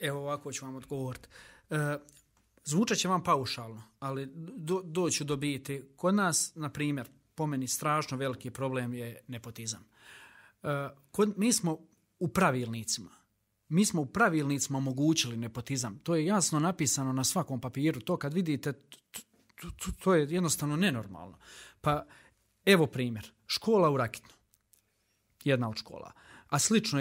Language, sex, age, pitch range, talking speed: Croatian, male, 40-59, 130-180 Hz, 140 wpm